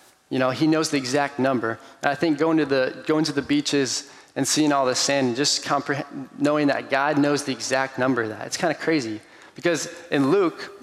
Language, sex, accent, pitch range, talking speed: English, male, American, 125-150 Hz, 220 wpm